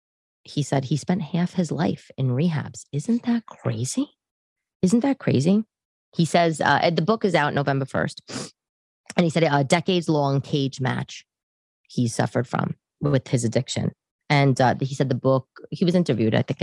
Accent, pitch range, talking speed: American, 120-155 Hz, 175 wpm